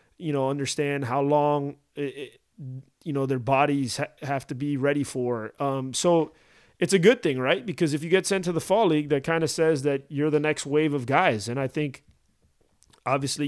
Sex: male